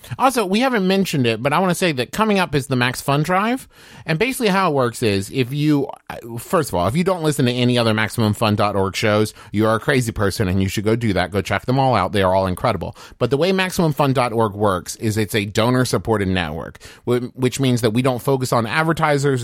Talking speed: 240 wpm